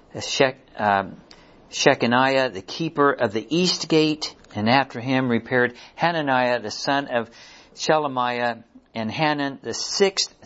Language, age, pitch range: English, 60-79, 120-150 Hz